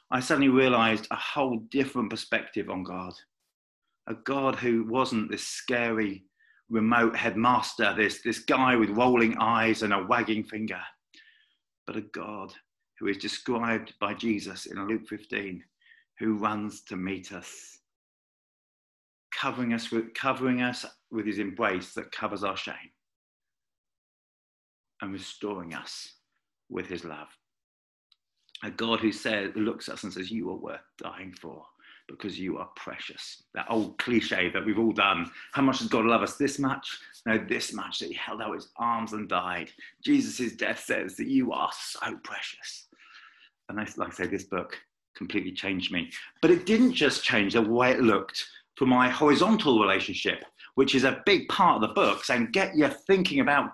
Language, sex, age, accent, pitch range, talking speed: English, male, 50-69, British, 105-130 Hz, 165 wpm